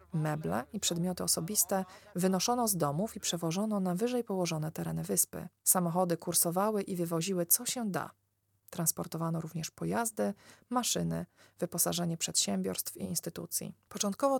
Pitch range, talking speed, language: 175-215 Hz, 125 wpm, Polish